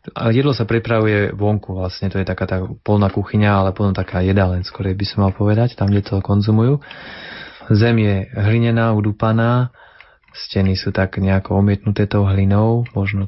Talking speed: 160 wpm